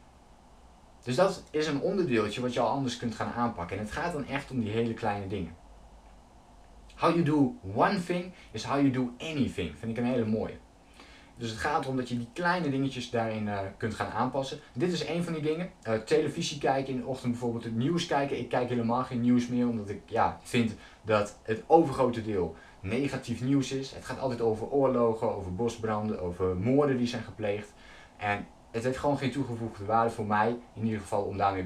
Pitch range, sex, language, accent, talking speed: 110-135 Hz, male, Dutch, Dutch, 205 wpm